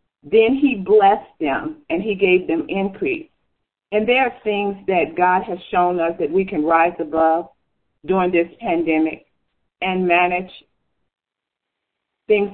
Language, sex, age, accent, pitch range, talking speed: English, female, 40-59, American, 175-210 Hz, 140 wpm